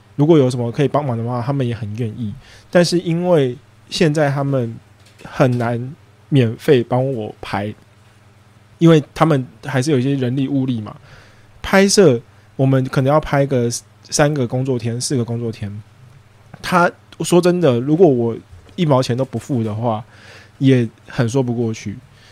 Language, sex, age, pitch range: English, male, 20-39, 115-140 Hz